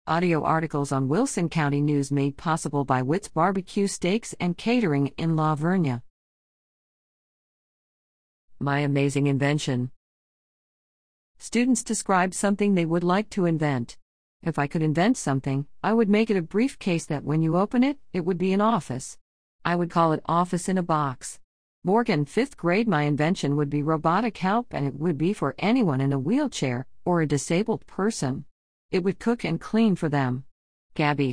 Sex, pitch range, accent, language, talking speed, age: female, 145-200 Hz, American, English, 165 wpm, 50-69